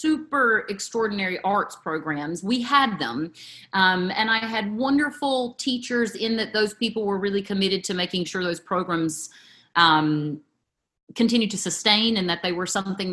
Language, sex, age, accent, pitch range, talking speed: English, female, 30-49, American, 175-230 Hz, 155 wpm